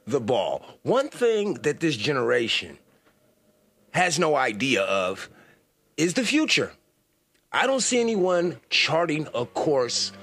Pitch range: 145-210 Hz